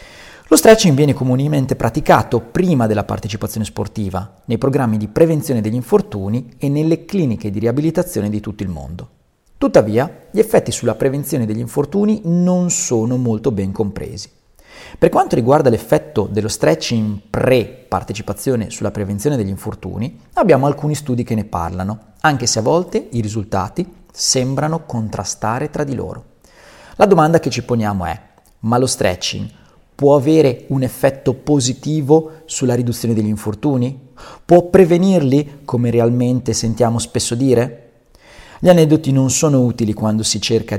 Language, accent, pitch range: Italian, native, 110-145 Hz